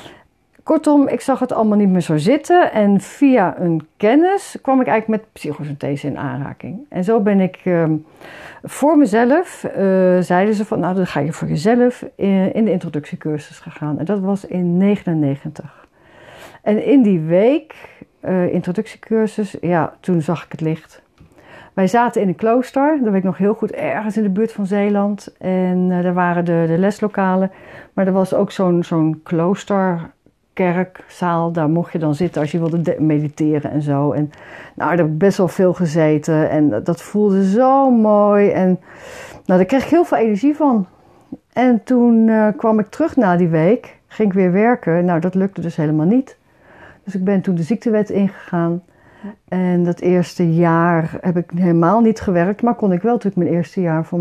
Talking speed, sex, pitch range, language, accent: 190 wpm, female, 170-220 Hz, Dutch, Dutch